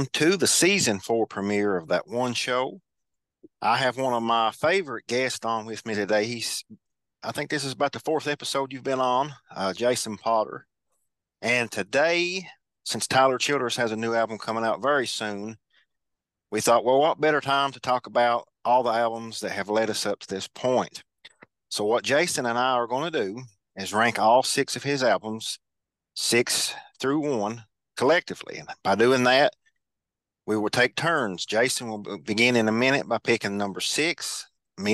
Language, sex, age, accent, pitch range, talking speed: English, male, 40-59, American, 110-130 Hz, 185 wpm